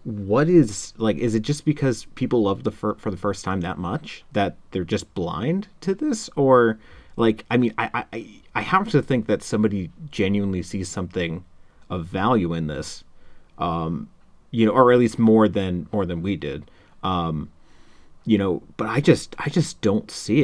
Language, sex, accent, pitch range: English, male, American, 95-135 Hz